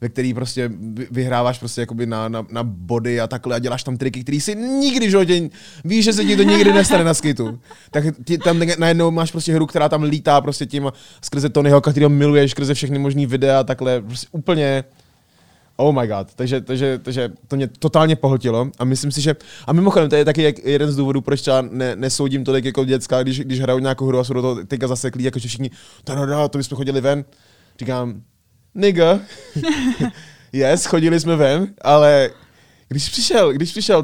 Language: Czech